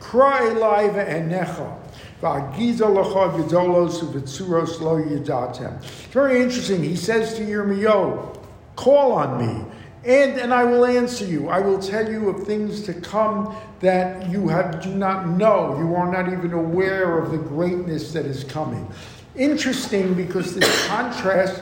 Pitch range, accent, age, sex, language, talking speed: 155-205 Hz, American, 60-79, male, English, 130 wpm